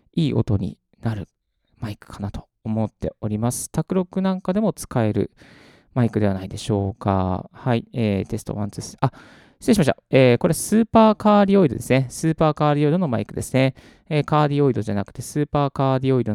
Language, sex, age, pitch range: Japanese, male, 20-39, 110-155 Hz